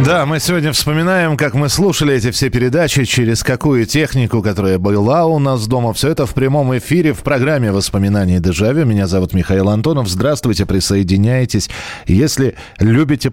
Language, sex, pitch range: Russian, male, 100-135 Hz